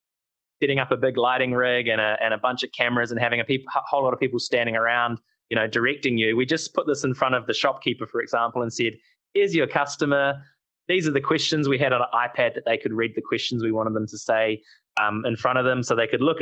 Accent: Australian